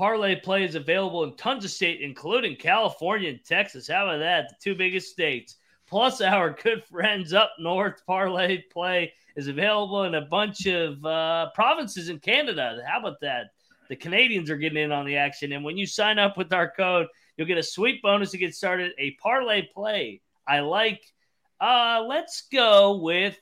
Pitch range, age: 155-195 Hz, 30-49